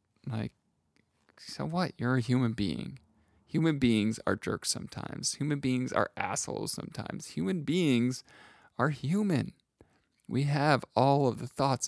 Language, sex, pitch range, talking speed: English, male, 105-130 Hz, 135 wpm